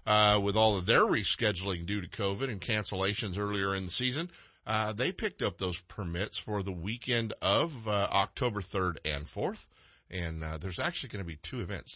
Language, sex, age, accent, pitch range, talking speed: English, male, 50-69, American, 90-125 Hz, 195 wpm